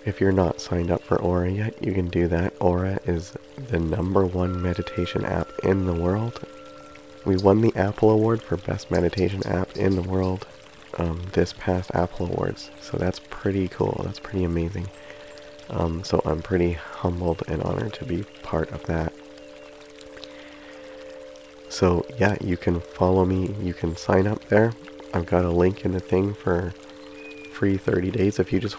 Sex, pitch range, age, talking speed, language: male, 85-95 Hz, 30-49, 175 wpm, English